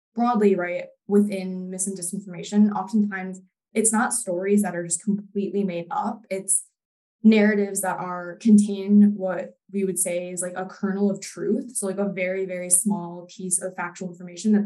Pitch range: 185-205 Hz